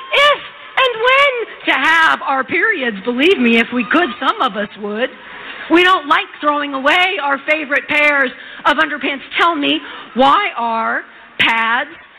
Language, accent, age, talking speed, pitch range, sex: English, American, 40-59, 155 wpm, 285-390 Hz, female